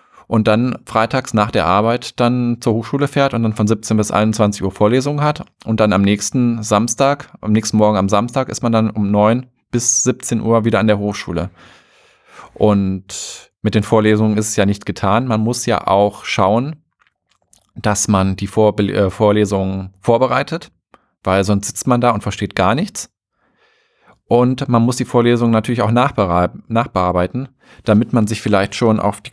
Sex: male